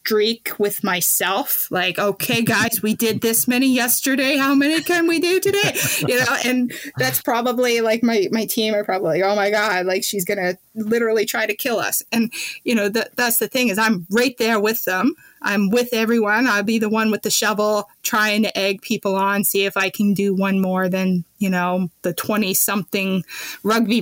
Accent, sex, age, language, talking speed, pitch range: American, female, 20-39, English, 200 wpm, 195-240 Hz